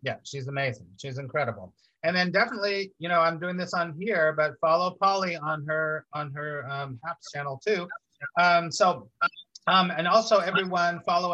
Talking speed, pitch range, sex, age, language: 175 wpm, 135-170 Hz, male, 30-49, English